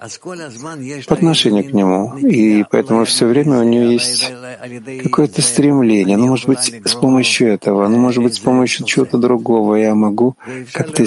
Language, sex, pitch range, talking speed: Russian, male, 105-130 Hz, 155 wpm